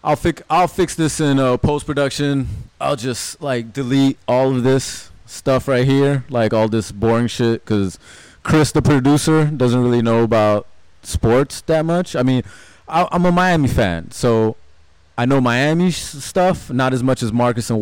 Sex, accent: male, American